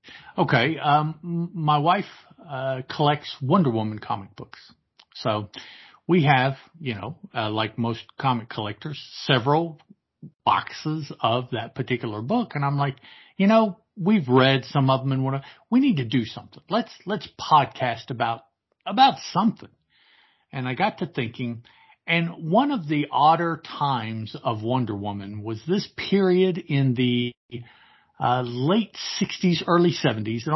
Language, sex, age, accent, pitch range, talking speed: English, male, 50-69, American, 125-170 Hz, 145 wpm